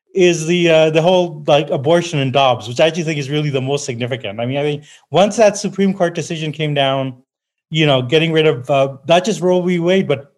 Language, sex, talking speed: English, male, 235 wpm